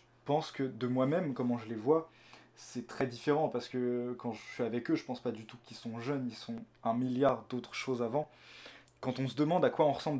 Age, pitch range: 20-39, 120-140 Hz